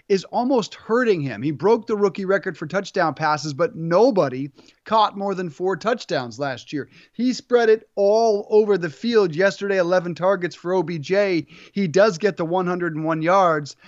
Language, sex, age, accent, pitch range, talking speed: English, male, 30-49, American, 170-210 Hz, 170 wpm